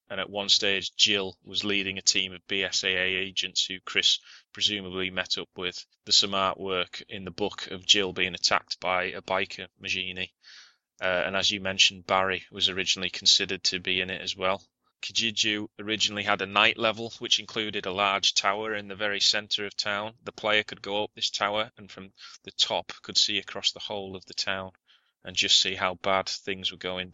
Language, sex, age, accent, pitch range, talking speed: English, male, 20-39, British, 95-105 Hz, 200 wpm